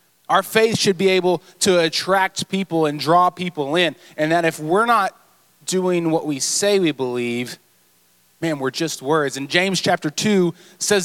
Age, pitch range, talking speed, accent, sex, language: 20-39, 125-170 Hz, 175 wpm, American, male, English